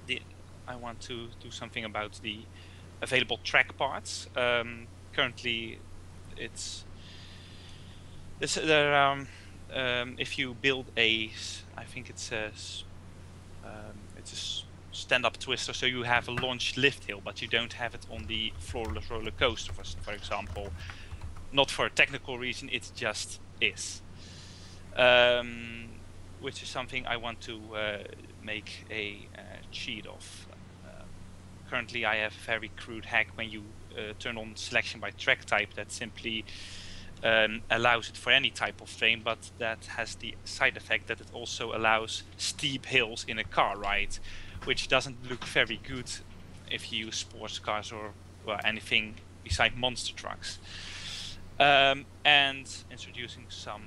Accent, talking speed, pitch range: Dutch, 145 wpm, 90-115 Hz